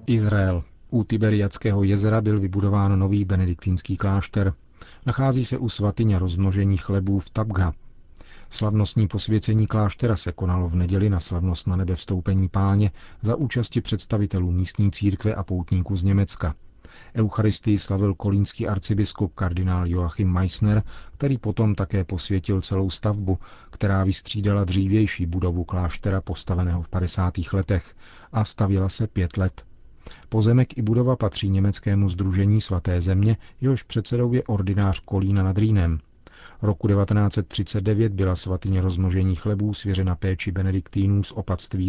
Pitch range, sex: 95-105 Hz, male